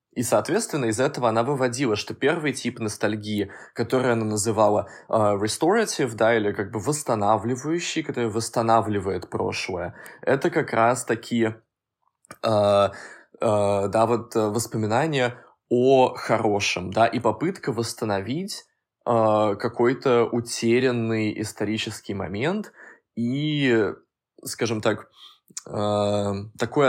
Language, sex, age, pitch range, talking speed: Russian, male, 20-39, 110-130 Hz, 105 wpm